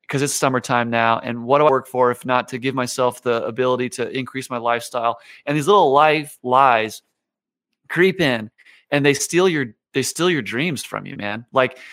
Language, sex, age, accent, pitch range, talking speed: English, male, 30-49, American, 120-150 Hz, 200 wpm